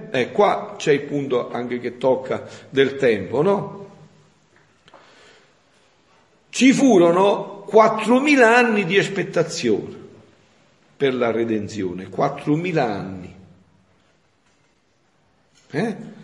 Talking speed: 90 wpm